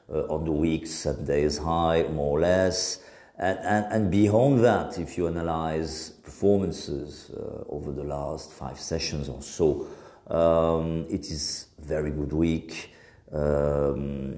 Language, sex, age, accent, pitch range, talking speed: French, male, 50-69, French, 75-100 Hz, 140 wpm